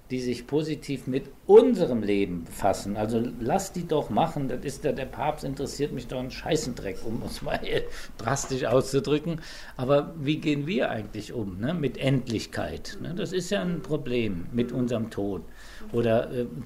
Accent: German